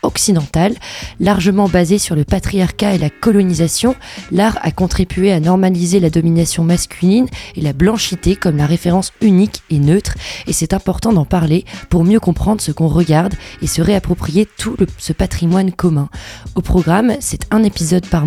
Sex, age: female, 20-39